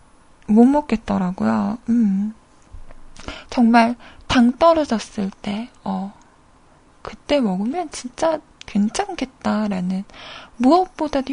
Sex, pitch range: female, 215-305 Hz